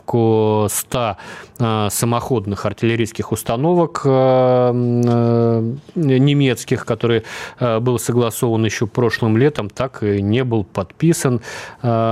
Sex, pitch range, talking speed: male, 105-125 Hz, 80 wpm